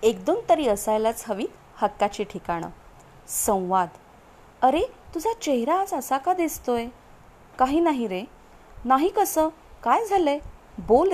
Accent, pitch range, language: native, 200-320 Hz, Marathi